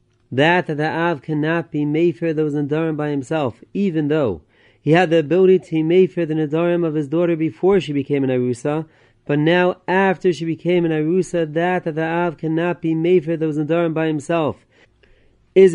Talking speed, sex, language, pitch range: 195 wpm, male, English, 150-170 Hz